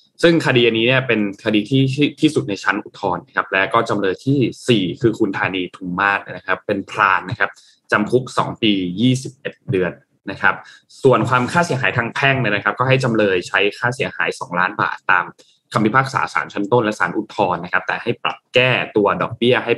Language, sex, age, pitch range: Thai, male, 20-39, 100-130 Hz